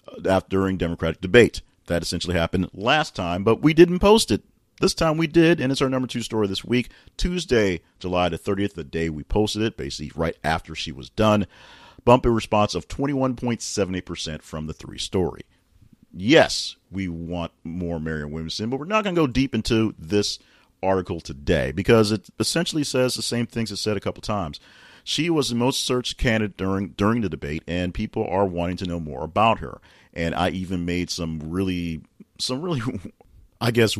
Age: 40-59